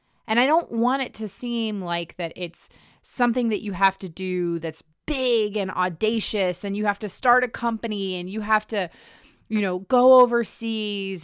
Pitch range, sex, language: 180-230 Hz, female, English